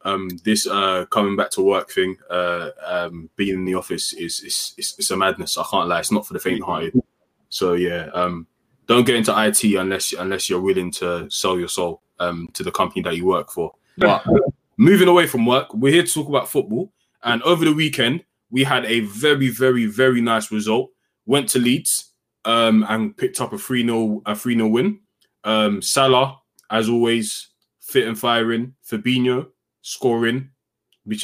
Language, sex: English, male